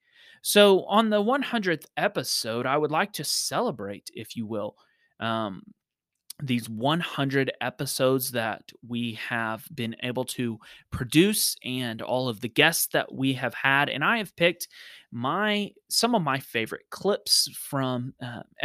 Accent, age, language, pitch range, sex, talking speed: American, 30-49, English, 125-165 Hz, male, 145 wpm